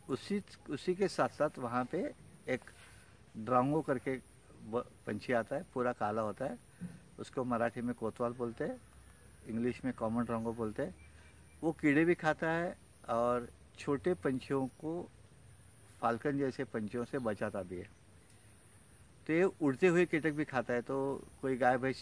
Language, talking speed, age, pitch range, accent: Marathi, 115 wpm, 60-79, 115-140 Hz, native